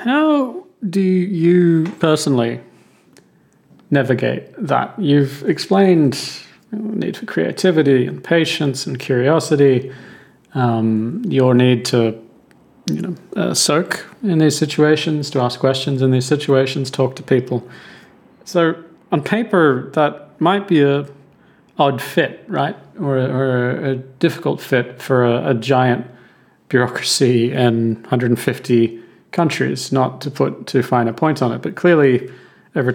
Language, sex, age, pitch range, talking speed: English, male, 40-59, 125-155 Hz, 130 wpm